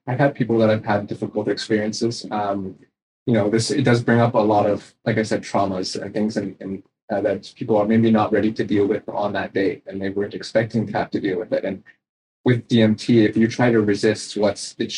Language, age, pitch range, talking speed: English, 20-39, 100-115 Hz, 240 wpm